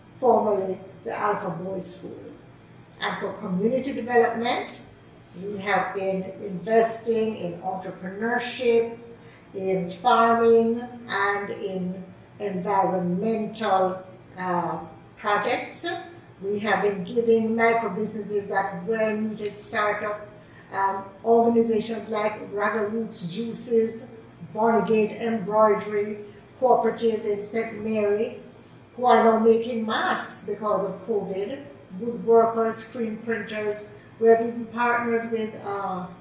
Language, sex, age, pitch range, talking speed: English, female, 50-69, 195-230 Hz, 100 wpm